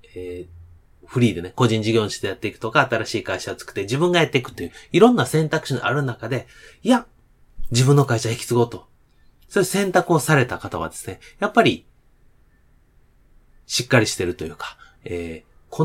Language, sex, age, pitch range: Japanese, male, 30-49, 95-140 Hz